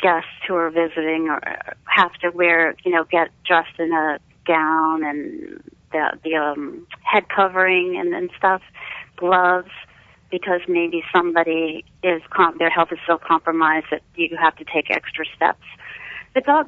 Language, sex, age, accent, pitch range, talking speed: English, female, 40-59, American, 160-185 Hz, 160 wpm